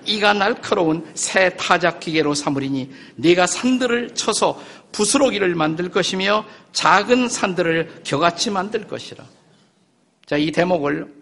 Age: 50-69